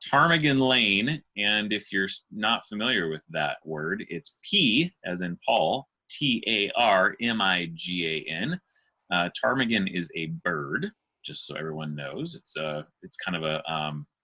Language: English